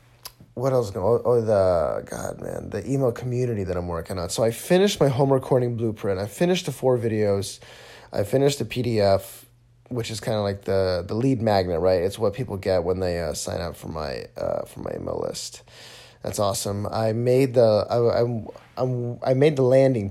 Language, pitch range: English, 95-120 Hz